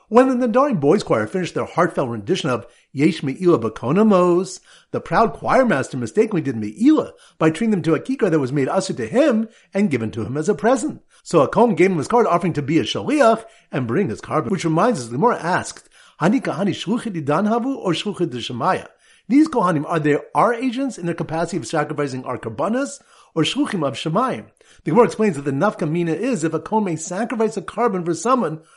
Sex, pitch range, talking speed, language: male, 155-220 Hz, 210 wpm, English